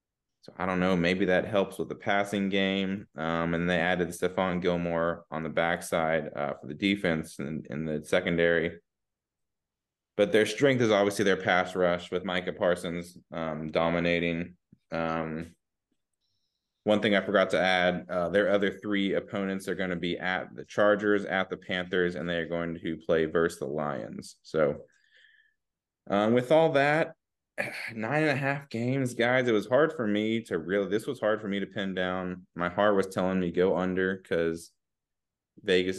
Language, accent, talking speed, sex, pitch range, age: English, American, 180 wpm, male, 85-105 Hz, 20-39